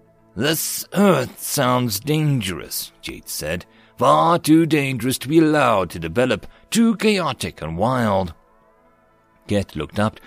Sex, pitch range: male, 110-150 Hz